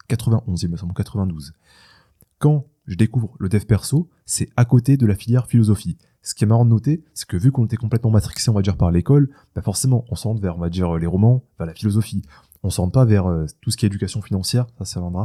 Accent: French